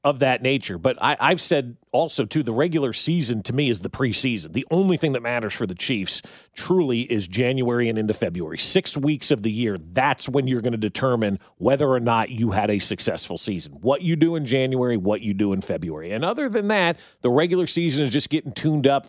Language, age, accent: English, 40-59, American